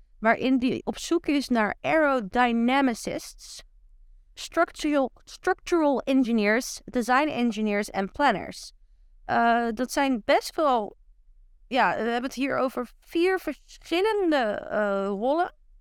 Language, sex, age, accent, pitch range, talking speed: Dutch, female, 20-39, Dutch, 215-280 Hz, 110 wpm